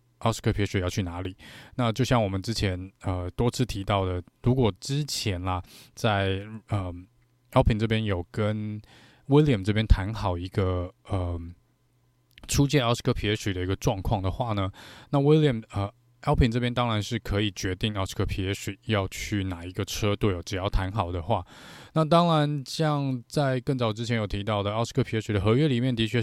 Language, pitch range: Chinese, 100-125 Hz